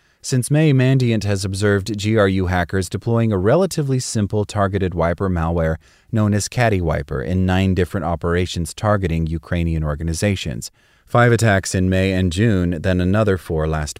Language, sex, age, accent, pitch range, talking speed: English, male, 30-49, American, 85-110 Hz, 145 wpm